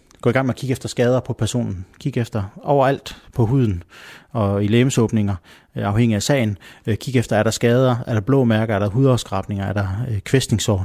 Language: Danish